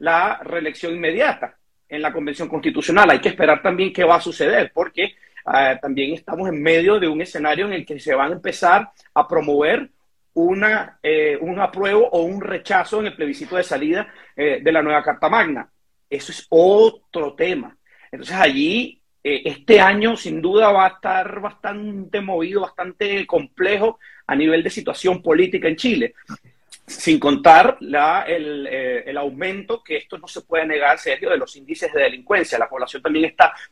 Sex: male